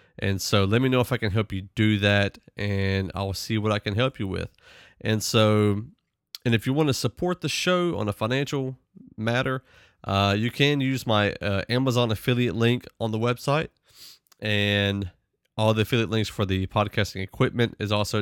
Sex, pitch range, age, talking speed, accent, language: male, 100-120 Hz, 30-49, 190 wpm, American, English